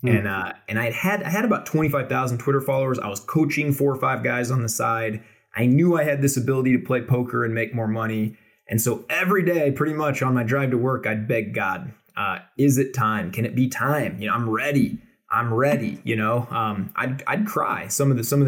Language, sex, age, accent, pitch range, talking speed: English, male, 20-39, American, 115-145 Hz, 245 wpm